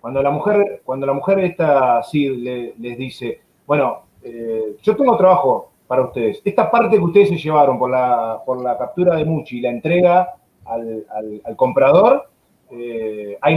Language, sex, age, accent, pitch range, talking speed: Spanish, male, 30-49, Argentinian, 130-195 Hz, 175 wpm